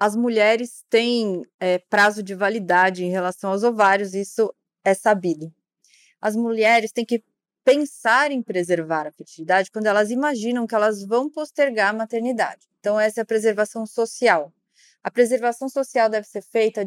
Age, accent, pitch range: 20-39, Brazilian, 195-240 Hz